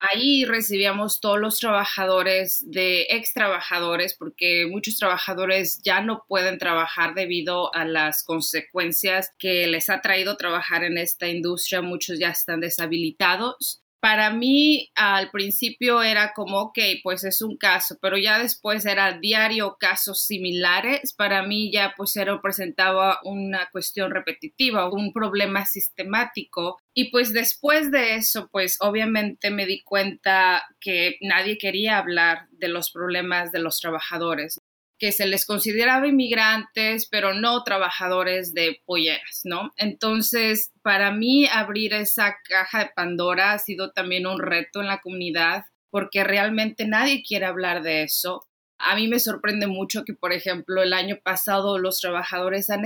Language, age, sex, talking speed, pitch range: English, 30-49, female, 145 wpm, 180-215 Hz